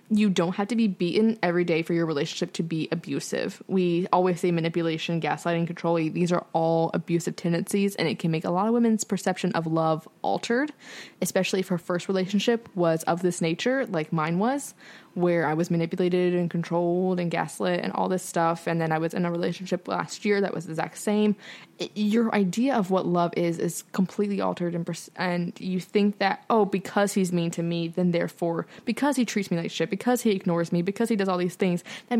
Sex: female